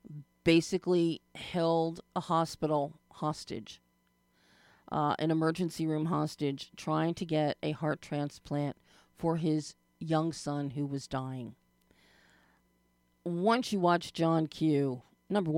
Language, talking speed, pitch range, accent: English, 110 wpm, 135-160 Hz, American